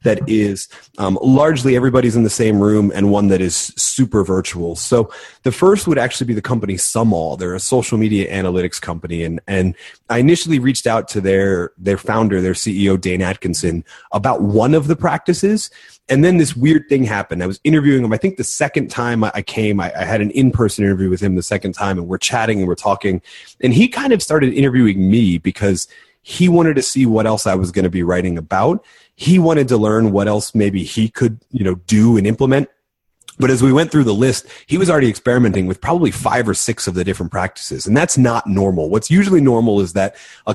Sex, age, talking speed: male, 30-49, 220 wpm